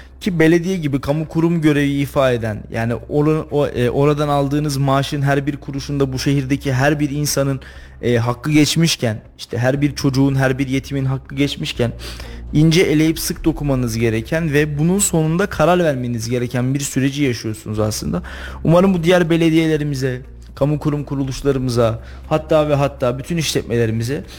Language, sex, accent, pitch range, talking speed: Turkish, male, native, 125-160 Hz, 145 wpm